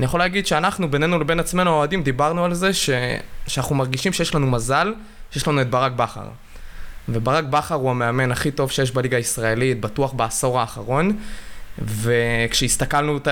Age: 20-39